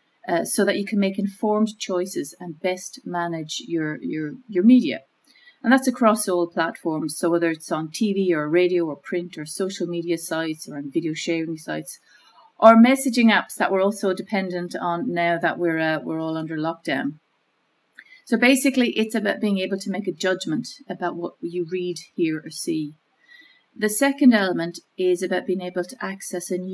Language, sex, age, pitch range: English, female, 40-59, 165-215 Hz